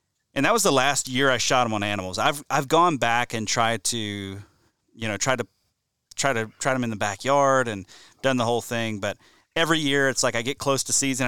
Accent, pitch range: American, 115-145 Hz